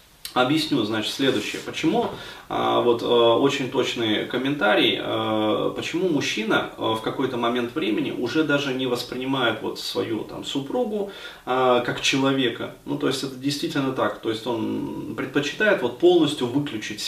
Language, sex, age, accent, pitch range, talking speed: Russian, male, 30-49, native, 120-155 Hz, 110 wpm